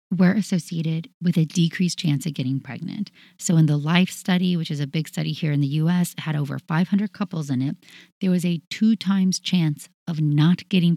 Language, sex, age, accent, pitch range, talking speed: English, female, 30-49, American, 160-195 Hz, 210 wpm